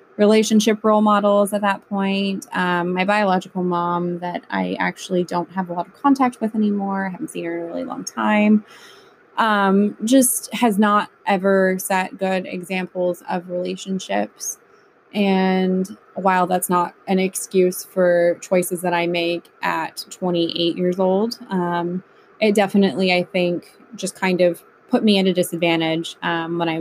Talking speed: 160 wpm